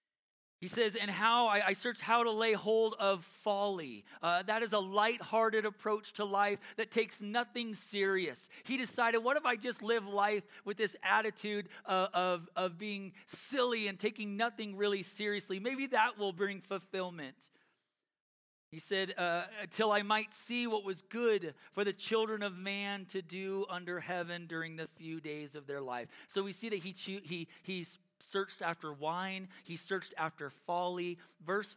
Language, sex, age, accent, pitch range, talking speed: English, male, 40-59, American, 185-240 Hz, 175 wpm